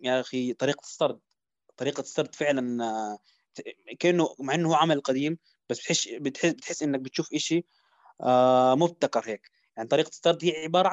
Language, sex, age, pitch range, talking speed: Arabic, male, 20-39, 130-165 Hz, 150 wpm